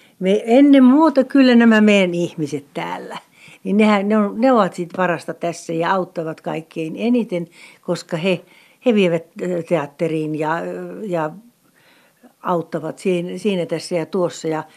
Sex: female